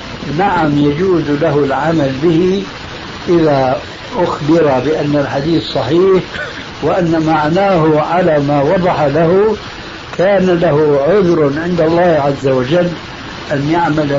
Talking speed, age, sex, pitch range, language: 105 wpm, 60-79, male, 140-170 Hz, Arabic